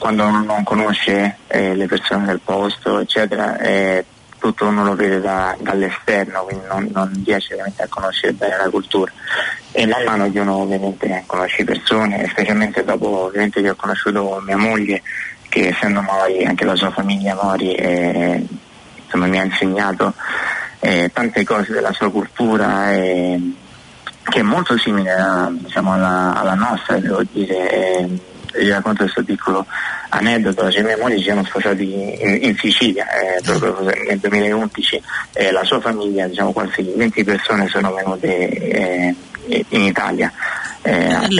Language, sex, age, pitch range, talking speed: Italian, male, 20-39, 95-105 Hz, 150 wpm